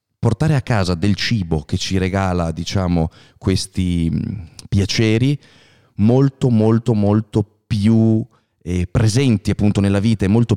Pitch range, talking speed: 95-120 Hz, 125 wpm